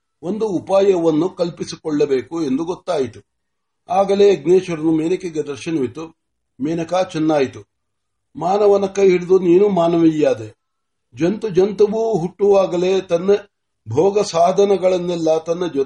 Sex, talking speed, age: male, 65 wpm, 60-79